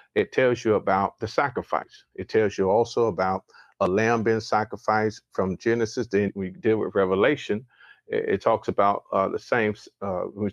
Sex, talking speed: male, 180 wpm